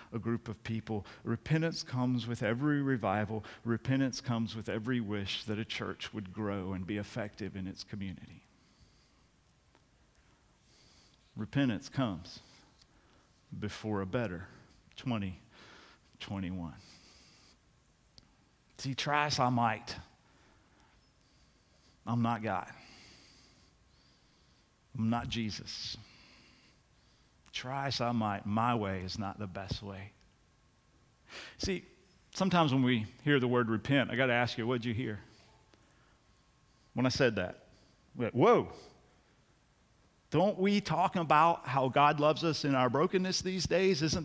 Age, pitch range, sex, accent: 50-69, 105-150 Hz, male, American